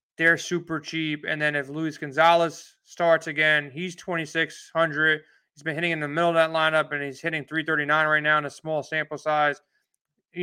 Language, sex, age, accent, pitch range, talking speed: English, male, 20-39, American, 155-170 Hz, 215 wpm